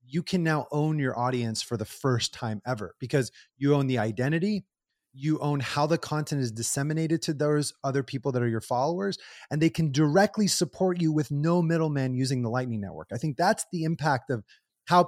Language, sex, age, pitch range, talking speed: English, male, 30-49, 135-170 Hz, 205 wpm